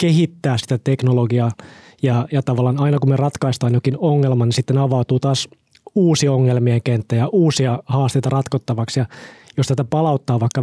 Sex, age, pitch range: male, 20-39, 130-150 Hz